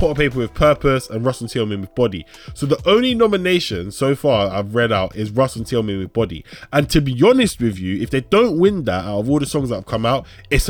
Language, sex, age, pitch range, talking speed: English, male, 20-39, 110-155 Hz, 255 wpm